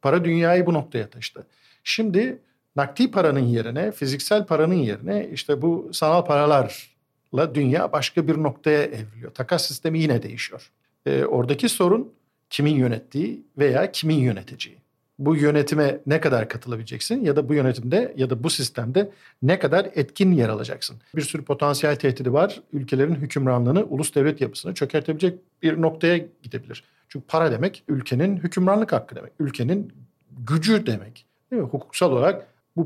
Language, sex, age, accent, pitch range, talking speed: Turkish, male, 50-69, native, 135-170 Hz, 145 wpm